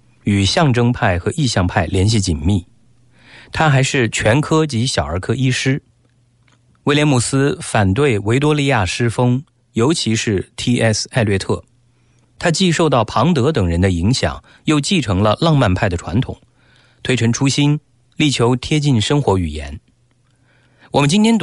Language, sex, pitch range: English, male, 105-140 Hz